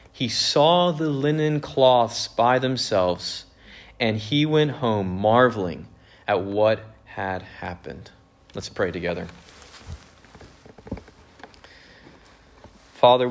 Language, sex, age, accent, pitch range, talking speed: English, male, 30-49, American, 95-120 Hz, 90 wpm